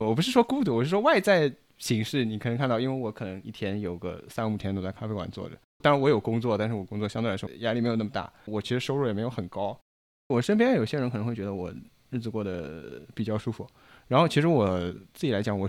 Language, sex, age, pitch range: Chinese, male, 20-39, 100-125 Hz